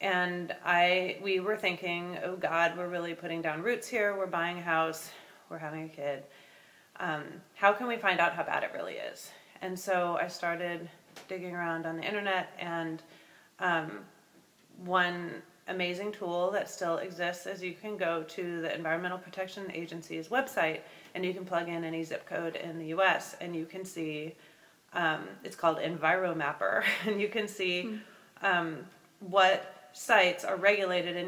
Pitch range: 170-190 Hz